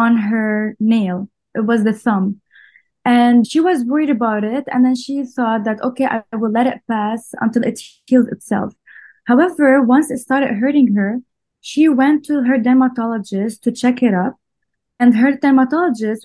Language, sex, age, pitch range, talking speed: English, female, 20-39, 215-255 Hz, 170 wpm